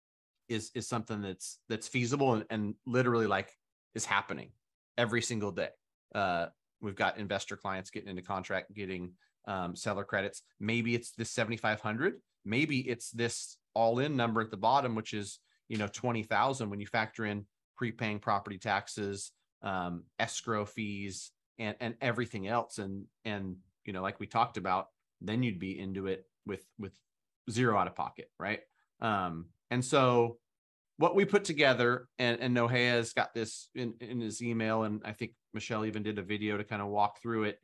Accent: American